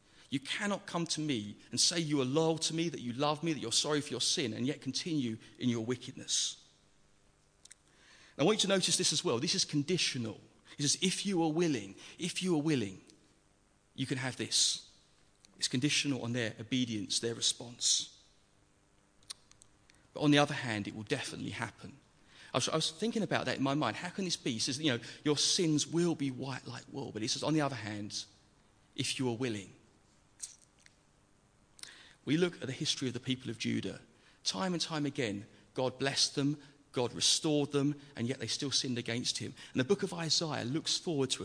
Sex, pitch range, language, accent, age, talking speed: male, 115-150 Hz, English, British, 40-59, 200 wpm